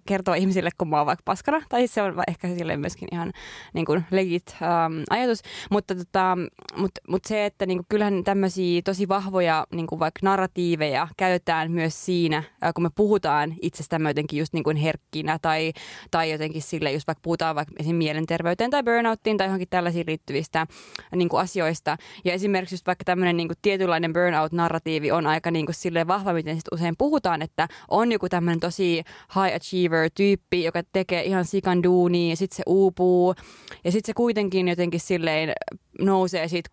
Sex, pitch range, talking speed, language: female, 160-190 Hz, 175 wpm, Finnish